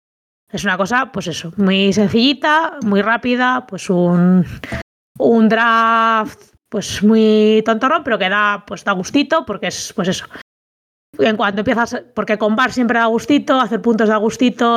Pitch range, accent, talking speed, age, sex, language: 195-240 Hz, Spanish, 155 wpm, 20-39, female, Spanish